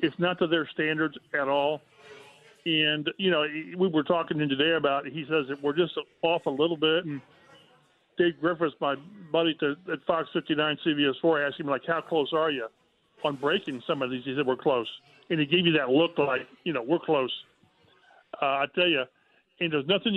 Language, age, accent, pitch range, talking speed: English, 40-59, American, 145-175 Hz, 200 wpm